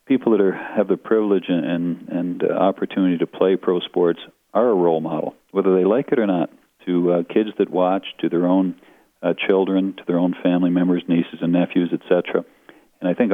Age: 40-59